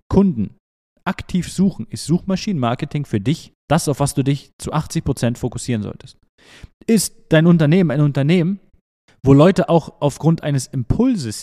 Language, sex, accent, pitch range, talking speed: German, male, German, 115-155 Hz, 140 wpm